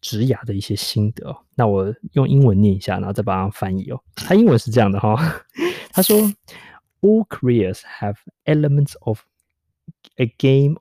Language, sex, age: Chinese, male, 20-39